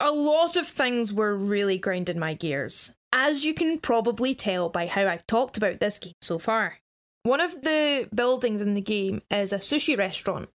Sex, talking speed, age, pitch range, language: female, 195 wpm, 10-29, 195-245 Hz, English